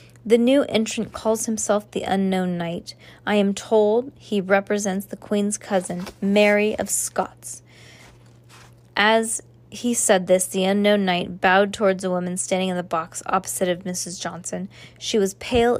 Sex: female